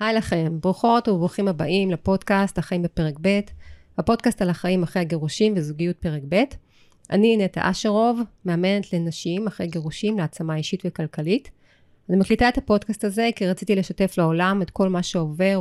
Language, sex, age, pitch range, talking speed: Hebrew, female, 30-49, 170-210 Hz, 155 wpm